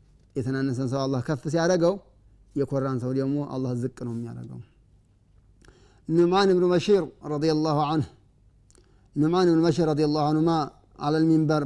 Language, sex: Amharic, male